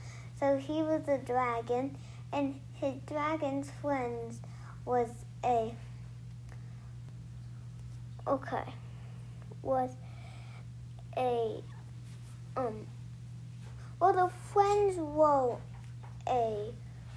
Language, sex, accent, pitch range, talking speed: English, male, American, 120-150 Hz, 70 wpm